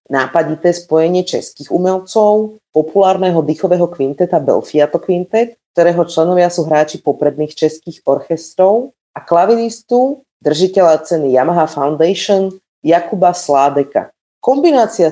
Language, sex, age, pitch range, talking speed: Slovak, female, 30-49, 145-185 Hz, 100 wpm